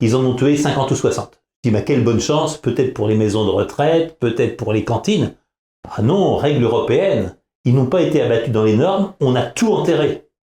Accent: French